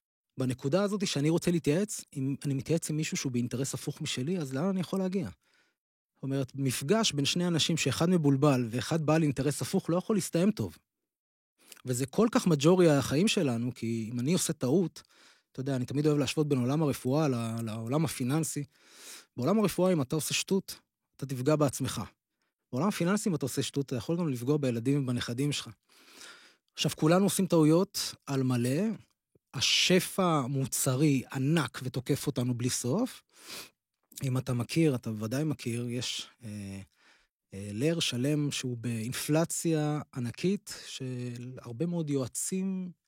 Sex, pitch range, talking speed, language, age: male, 130-165 Hz, 145 wpm, Hebrew, 20-39